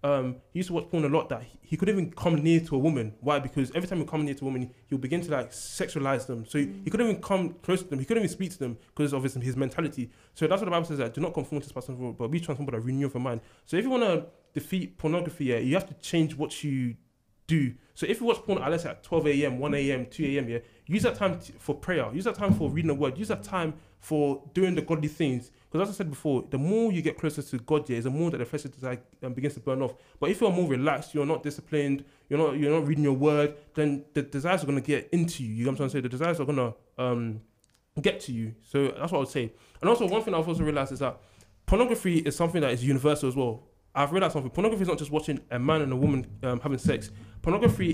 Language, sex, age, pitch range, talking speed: English, male, 20-39, 130-165 Hz, 285 wpm